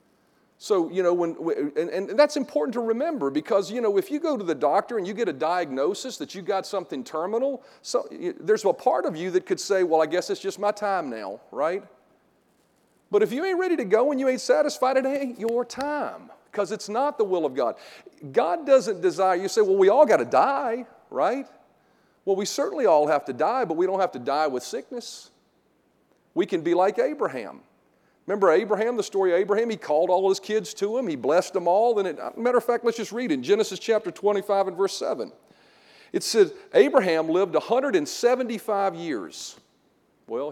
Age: 40-59